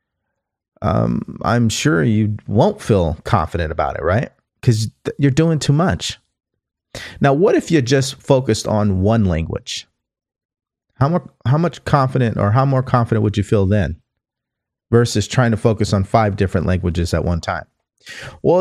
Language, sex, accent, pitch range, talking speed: English, male, American, 105-145 Hz, 160 wpm